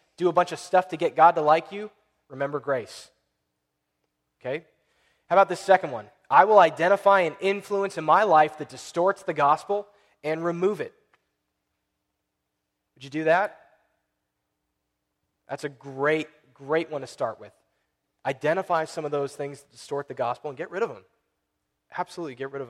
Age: 20-39